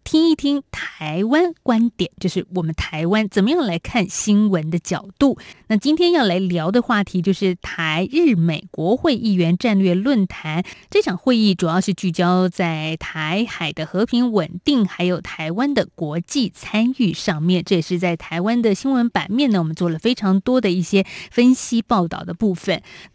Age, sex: 20-39, female